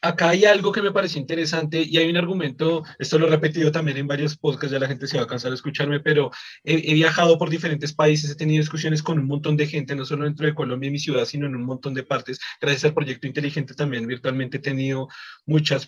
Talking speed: 250 wpm